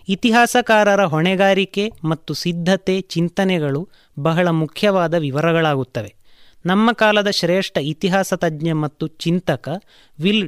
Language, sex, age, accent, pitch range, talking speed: Kannada, male, 30-49, native, 160-200 Hz, 90 wpm